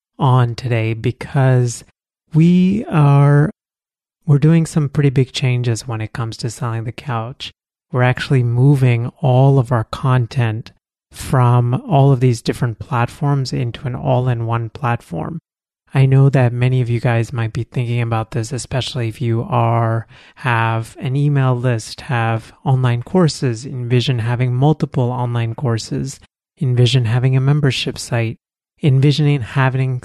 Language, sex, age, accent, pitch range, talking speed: English, male, 30-49, American, 120-135 Hz, 140 wpm